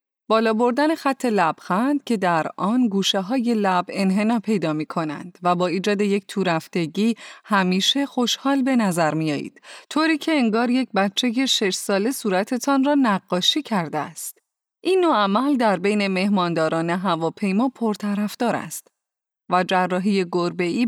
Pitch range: 180-245 Hz